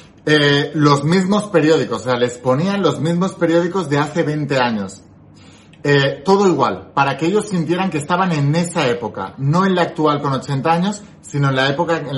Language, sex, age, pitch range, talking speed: Spanish, male, 30-49, 130-170 Hz, 190 wpm